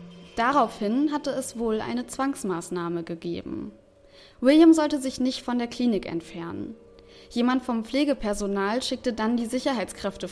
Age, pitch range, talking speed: 20-39, 205-245 Hz, 130 wpm